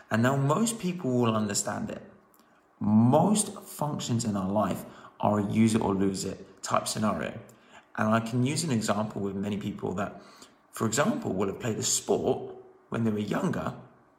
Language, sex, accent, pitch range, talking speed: English, male, British, 110-135 Hz, 180 wpm